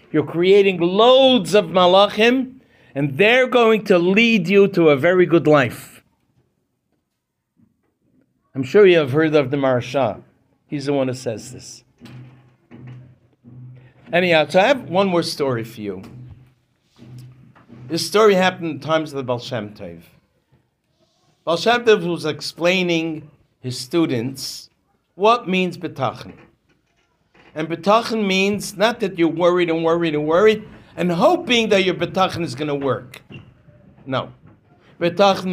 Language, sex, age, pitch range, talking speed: English, male, 60-79, 130-185 Hz, 135 wpm